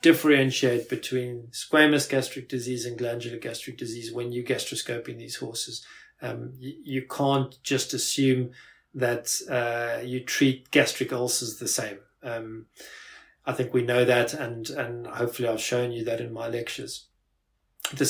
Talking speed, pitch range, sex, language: 150 wpm, 120-140 Hz, male, Danish